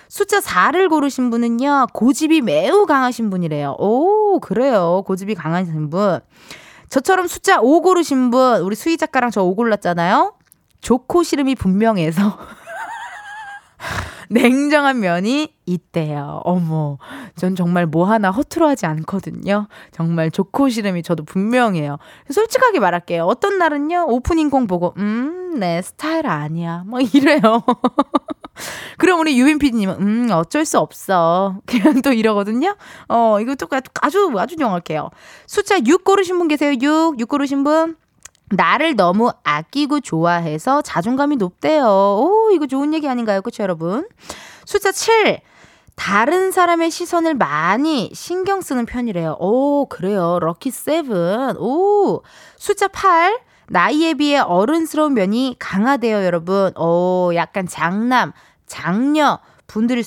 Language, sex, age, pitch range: Korean, female, 20-39, 190-315 Hz